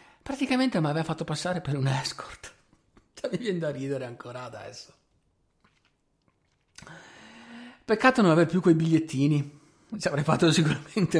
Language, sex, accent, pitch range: Italian, male, native, 125-165 Hz